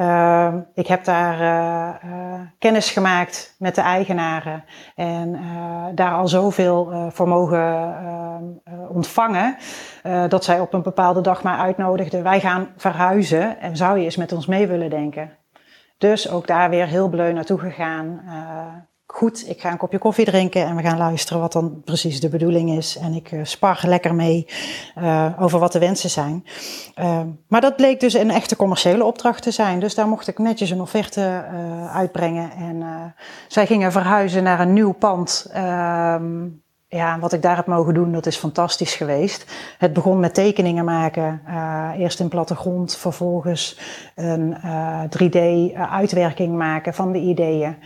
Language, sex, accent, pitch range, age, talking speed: Dutch, female, Dutch, 170-185 Hz, 30-49, 170 wpm